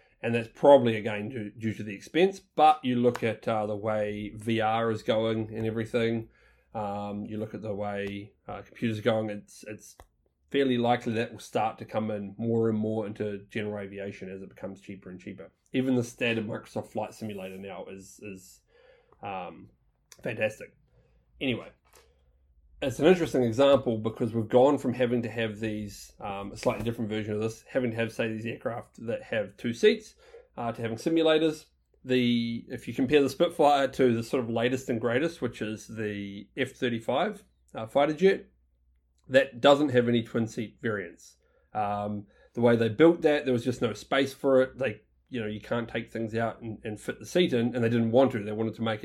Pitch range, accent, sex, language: 105-125 Hz, Australian, male, English